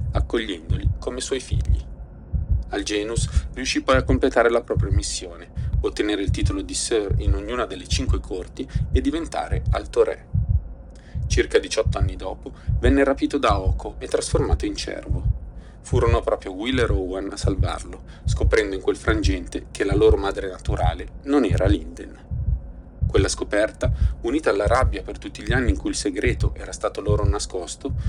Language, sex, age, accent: Italian, male, 30-49, native